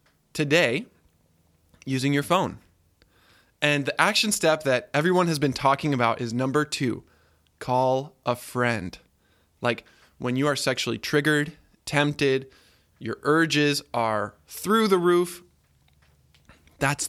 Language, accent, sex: English, American, male